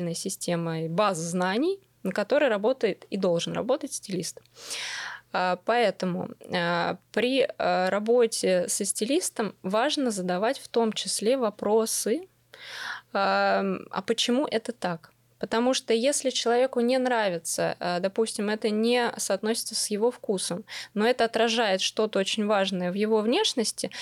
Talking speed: 115 wpm